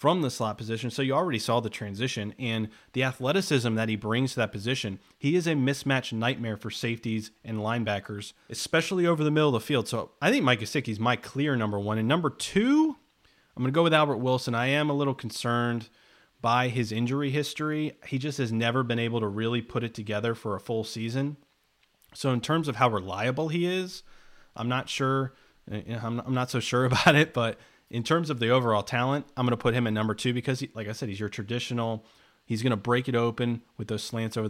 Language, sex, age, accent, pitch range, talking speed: English, male, 30-49, American, 115-145 Hz, 225 wpm